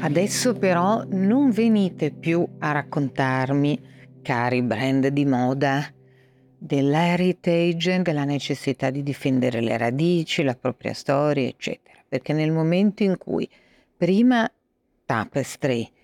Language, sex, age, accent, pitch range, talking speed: Italian, female, 50-69, native, 135-170 Hz, 110 wpm